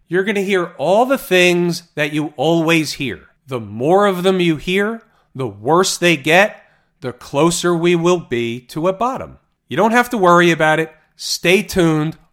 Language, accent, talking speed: English, American, 185 wpm